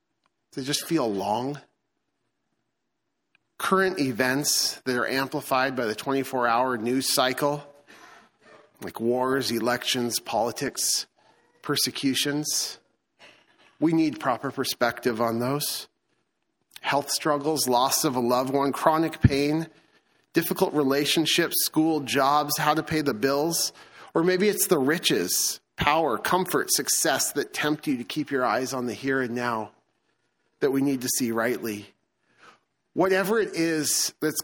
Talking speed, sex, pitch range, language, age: 125 wpm, male, 125-160 Hz, English, 40-59